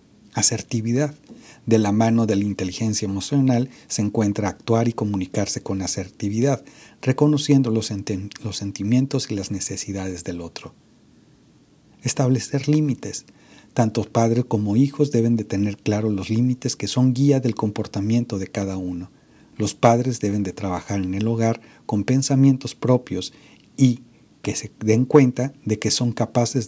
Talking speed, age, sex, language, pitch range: 145 wpm, 40-59, male, Spanish, 100-125 Hz